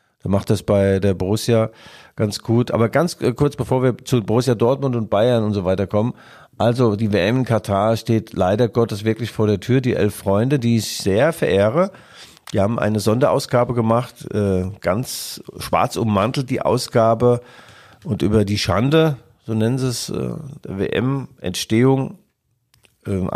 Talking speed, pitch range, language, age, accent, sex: 170 wpm, 105-125 Hz, German, 50-69, German, male